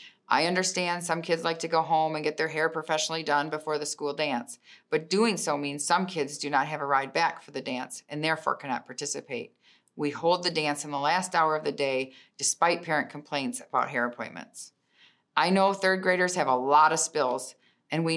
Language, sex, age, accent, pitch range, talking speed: English, female, 40-59, American, 145-175 Hz, 215 wpm